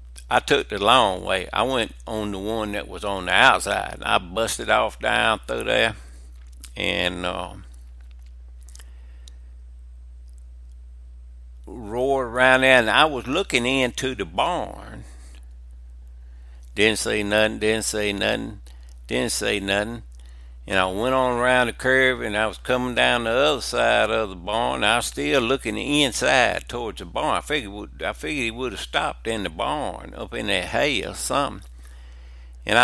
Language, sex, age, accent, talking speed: English, male, 60-79, American, 160 wpm